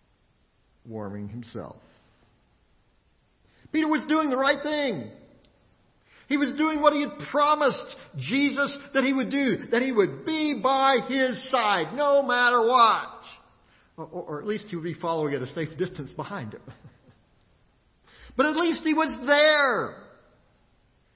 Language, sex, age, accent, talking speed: English, male, 50-69, American, 140 wpm